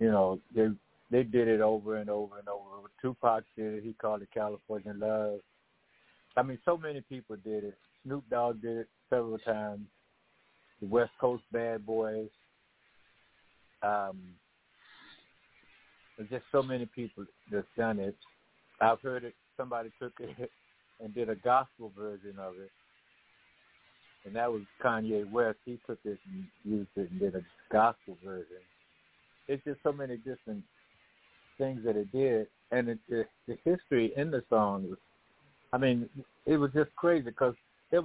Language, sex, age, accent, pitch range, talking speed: English, male, 60-79, American, 105-130 Hz, 155 wpm